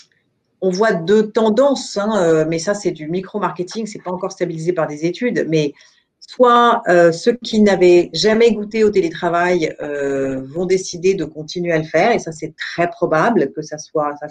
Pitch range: 170-225 Hz